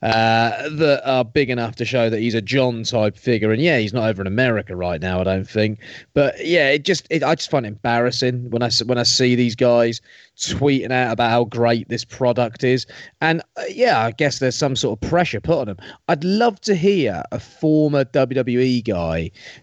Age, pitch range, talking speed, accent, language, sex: 30-49, 115-155 Hz, 210 wpm, British, English, male